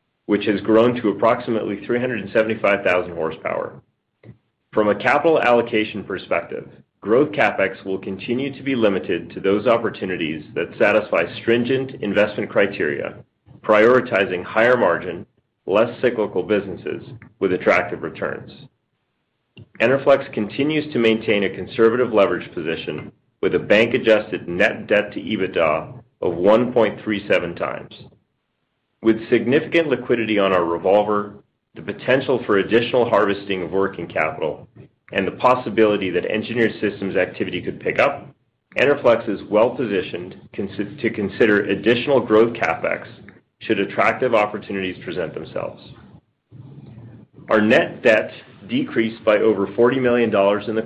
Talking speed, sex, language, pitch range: 120 wpm, male, English, 100-120 Hz